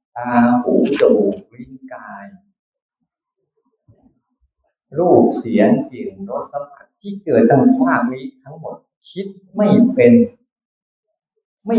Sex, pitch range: male, 145-240 Hz